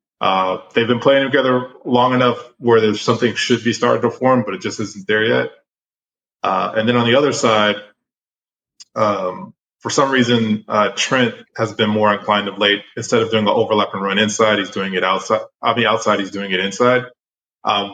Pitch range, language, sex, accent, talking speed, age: 100-120 Hz, English, male, American, 205 wpm, 20-39